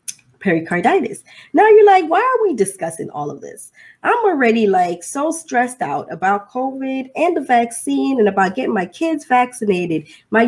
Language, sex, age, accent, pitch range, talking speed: English, female, 20-39, American, 190-265 Hz, 165 wpm